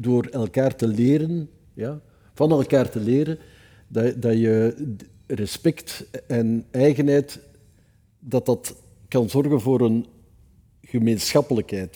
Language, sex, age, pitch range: Dutch, male, 60-79, 105-135 Hz